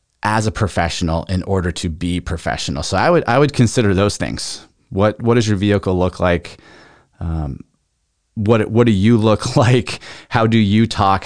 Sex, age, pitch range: male, 30-49, 95-120 Hz